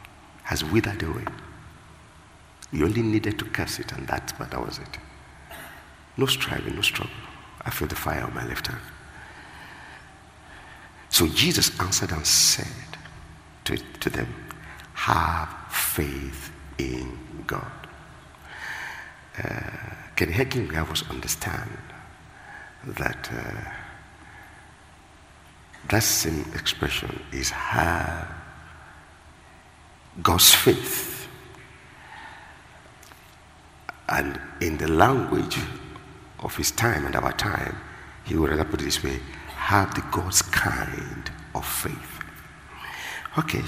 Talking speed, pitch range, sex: 105 wpm, 75-105 Hz, male